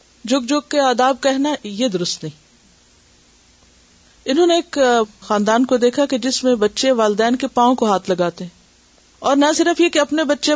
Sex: female